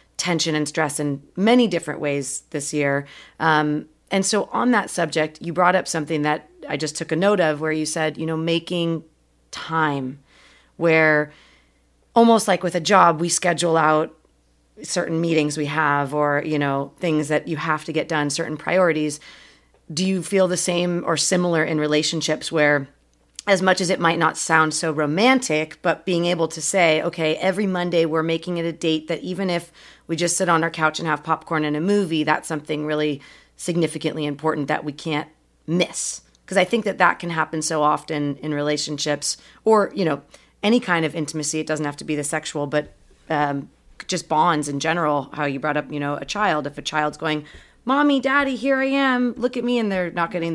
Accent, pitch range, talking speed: American, 150-175 Hz, 200 wpm